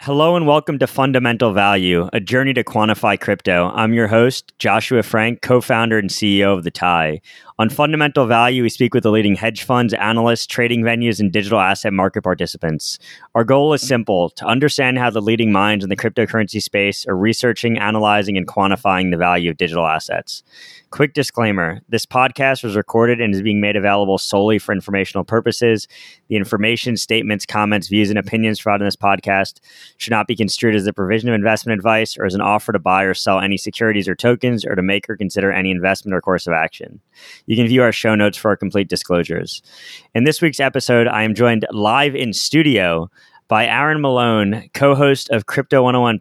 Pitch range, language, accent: 105-125 Hz, English, American